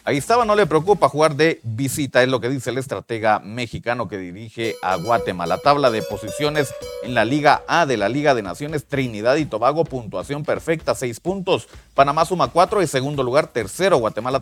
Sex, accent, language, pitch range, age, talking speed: male, Mexican, Spanish, 125-165 Hz, 40-59, 190 wpm